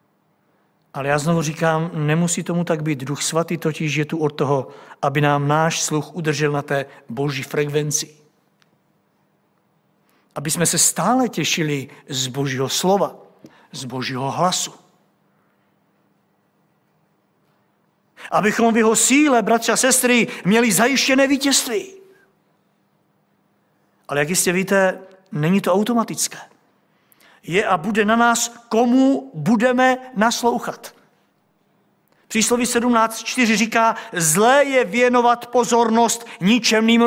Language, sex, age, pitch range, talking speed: Czech, male, 50-69, 165-245 Hz, 110 wpm